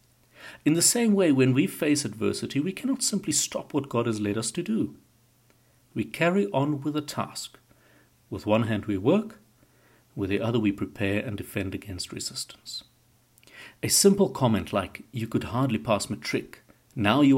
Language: English